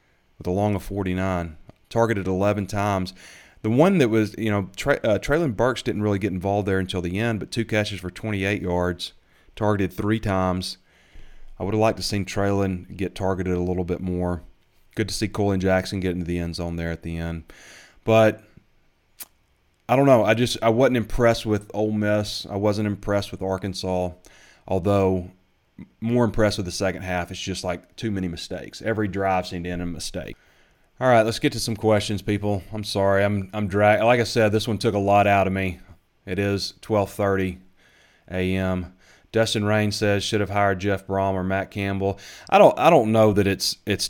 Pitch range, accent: 90-105 Hz, American